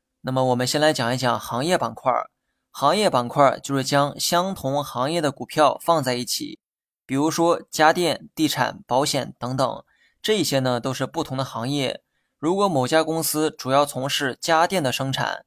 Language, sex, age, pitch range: Chinese, male, 20-39, 130-165 Hz